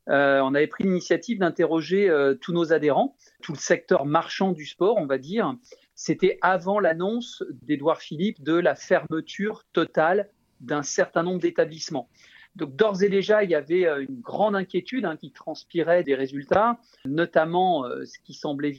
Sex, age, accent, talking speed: male, 40-59, French, 165 wpm